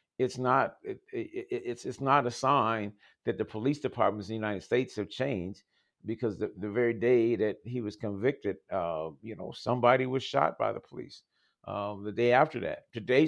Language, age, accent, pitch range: English, 50-69, American, 110-145 Hz